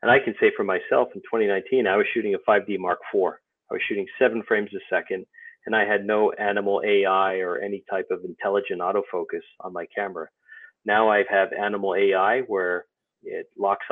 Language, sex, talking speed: English, male, 195 wpm